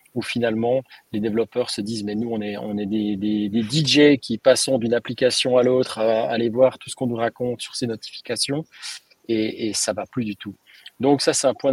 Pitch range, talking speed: 110-130 Hz, 235 wpm